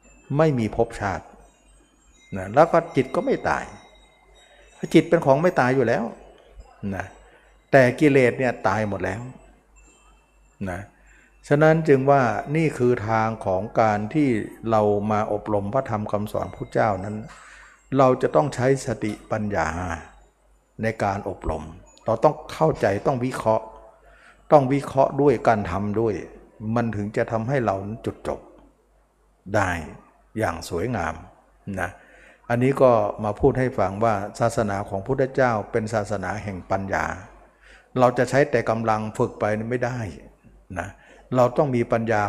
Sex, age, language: male, 60-79, Thai